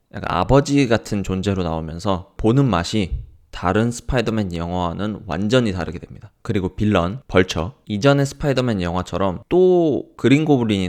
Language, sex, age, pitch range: Korean, male, 20-39, 90-125 Hz